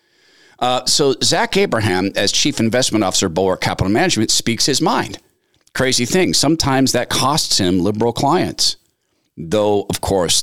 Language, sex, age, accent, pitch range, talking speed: English, male, 50-69, American, 100-140 Hz, 150 wpm